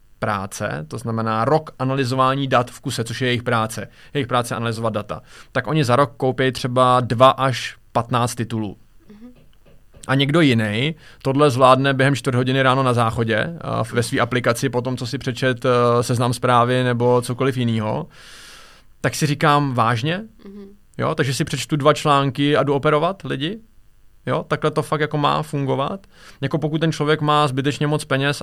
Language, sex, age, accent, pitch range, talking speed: Czech, male, 20-39, native, 115-135 Hz, 165 wpm